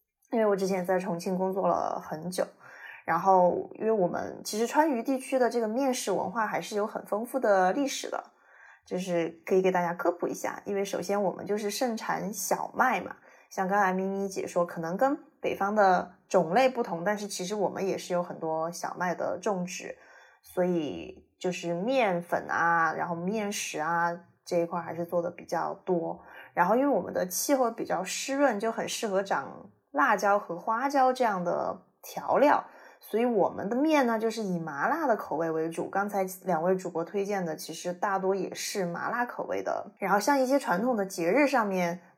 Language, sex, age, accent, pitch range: Chinese, female, 20-39, native, 180-230 Hz